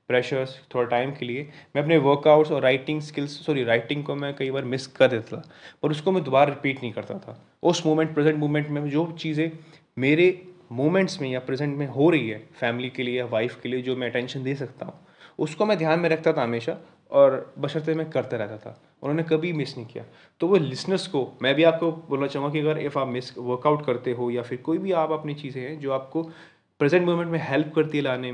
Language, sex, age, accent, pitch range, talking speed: Hindi, male, 20-39, native, 125-160 Hz, 225 wpm